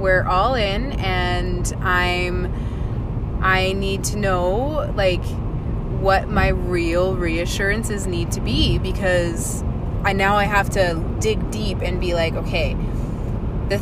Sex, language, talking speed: female, English, 130 wpm